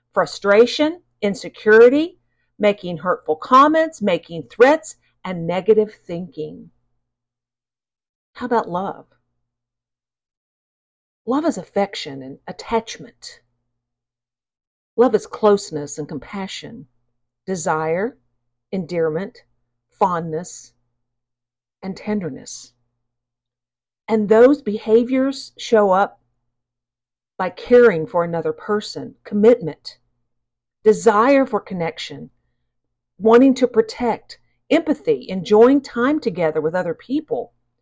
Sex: female